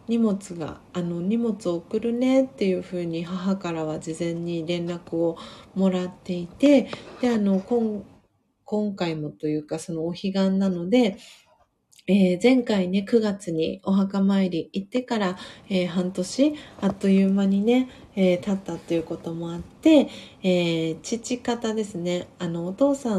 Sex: female